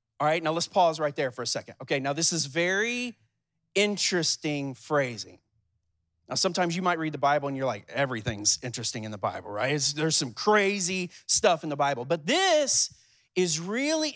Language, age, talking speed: English, 30-49, 185 wpm